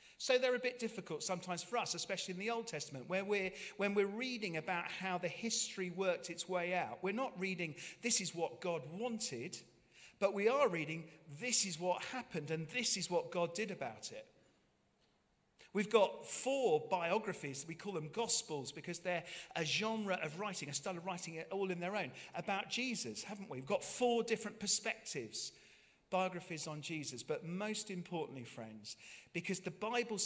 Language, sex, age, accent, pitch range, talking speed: English, male, 40-59, British, 155-205 Hz, 180 wpm